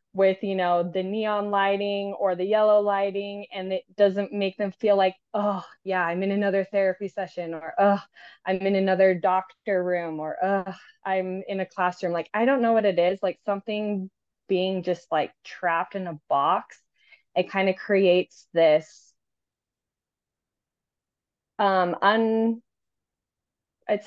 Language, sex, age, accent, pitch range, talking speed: English, female, 20-39, American, 180-210 Hz, 150 wpm